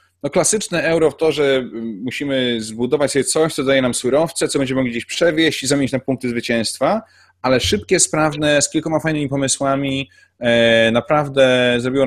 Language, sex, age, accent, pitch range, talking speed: Polish, male, 20-39, native, 100-130 Hz, 165 wpm